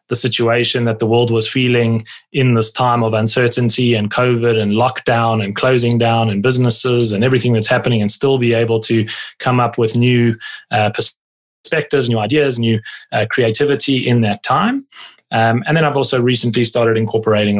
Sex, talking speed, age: male, 175 wpm, 20-39